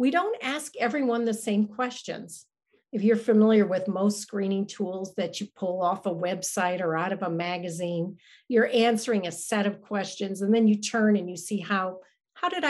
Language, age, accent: English, 50-69, American